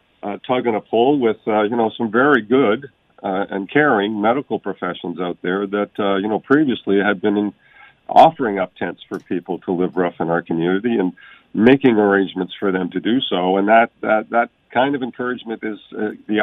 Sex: male